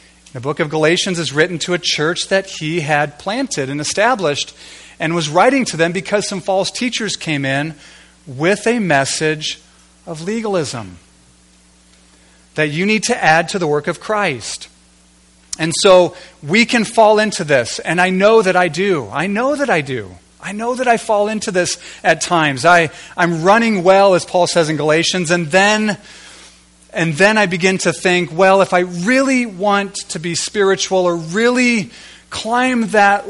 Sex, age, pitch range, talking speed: male, 40-59, 140-195 Hz, 175 wpm